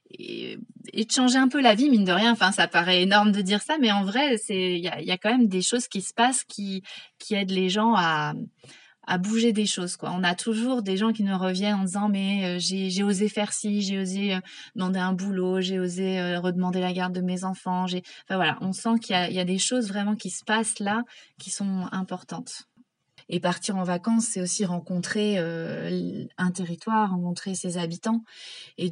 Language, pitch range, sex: French, 180-210 Hz, female